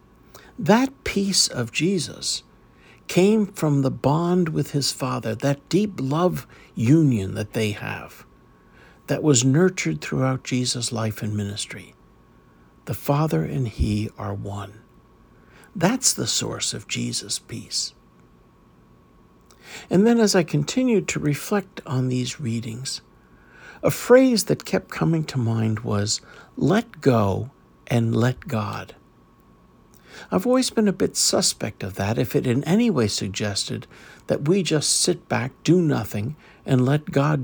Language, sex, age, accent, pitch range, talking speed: English, male, 60-79, American, 105-170 Hz, 135 wpm